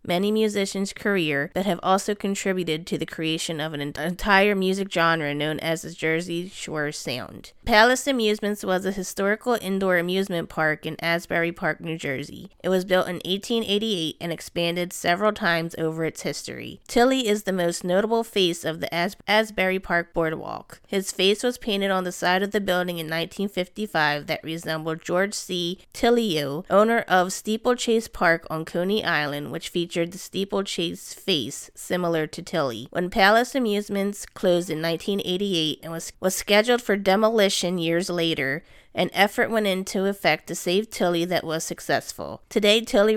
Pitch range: 165-200 Hz